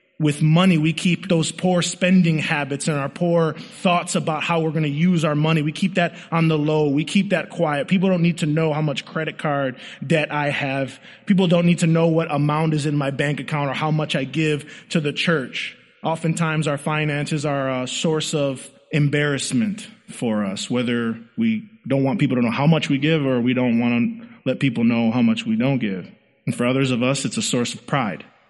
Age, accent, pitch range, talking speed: 20-39, American, 140-185 Hz, 225 wpm